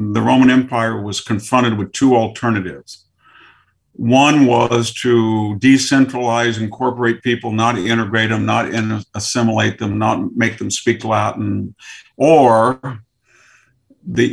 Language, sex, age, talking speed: English, male, 50-69, 115 wpm